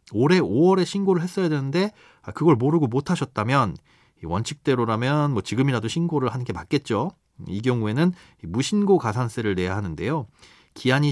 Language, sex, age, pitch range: Korean, male, 30-49, 110-170 Hz